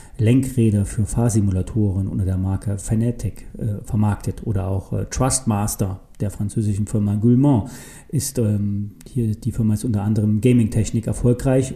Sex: male